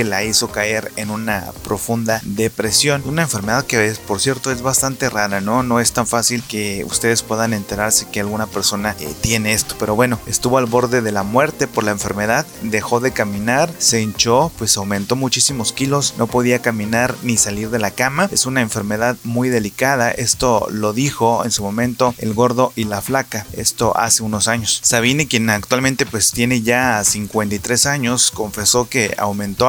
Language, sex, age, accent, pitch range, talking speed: English, male, 30-49, Mexican, 105-125 Hz, 180 wpm